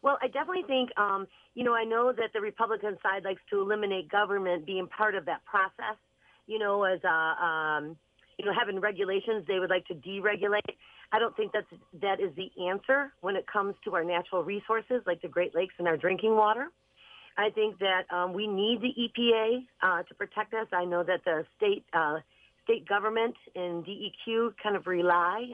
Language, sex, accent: English, female, American